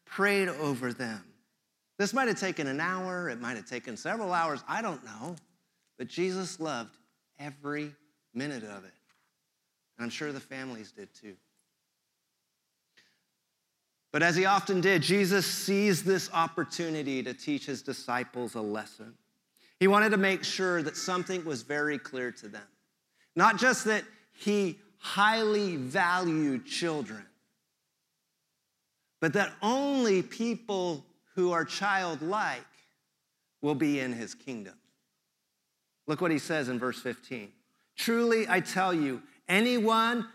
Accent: American